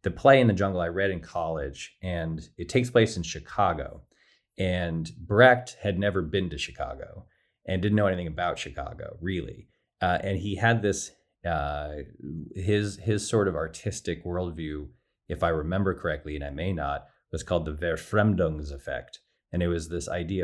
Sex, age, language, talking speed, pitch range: male, 30-49, English, 175 wpm, 80-95 Hz